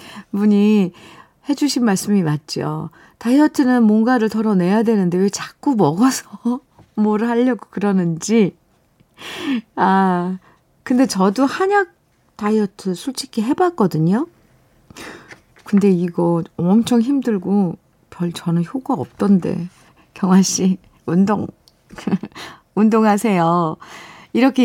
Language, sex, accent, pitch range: Korean, female, native, 170-240 Hz